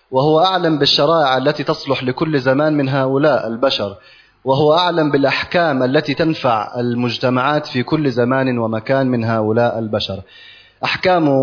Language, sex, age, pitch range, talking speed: Indonesian, male, 30-49, 120-150 Hz, 125 wpm